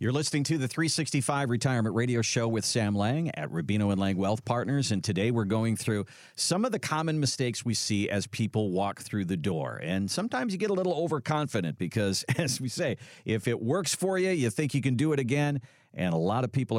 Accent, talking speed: American, 225 wpm